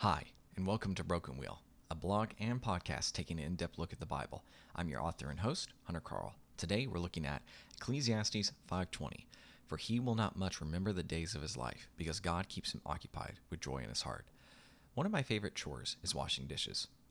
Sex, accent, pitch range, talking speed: male, American, 85-110 Hz, 205 wpm